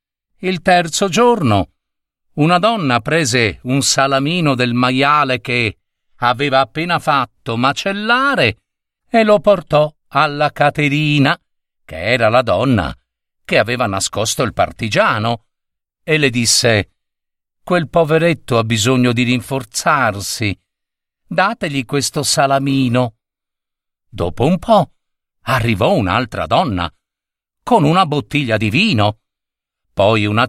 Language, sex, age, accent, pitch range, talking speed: Italian, male, 50-69, native, 120-180 Hz, 105 wpm